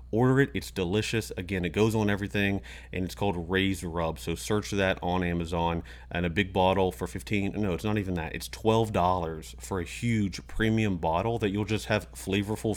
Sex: male